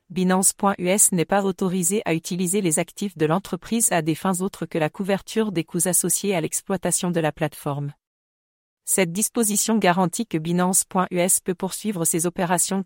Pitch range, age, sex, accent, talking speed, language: 165-195 Hz, 40-59, female, French, 160 wpm, English